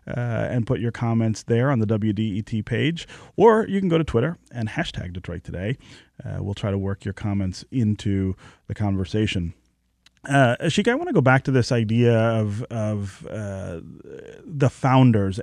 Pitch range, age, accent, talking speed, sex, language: 105-130 Hz, 30-49, American, 175 wpm, male, English